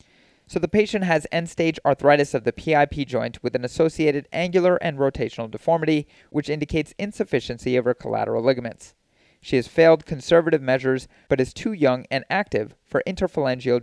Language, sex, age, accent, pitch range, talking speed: English, male, 30-49, American, 125-165 Hz, 160 wpm